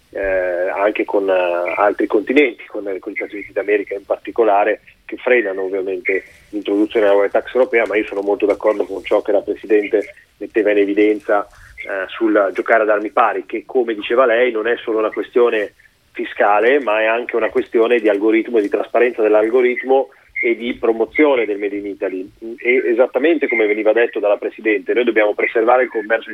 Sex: male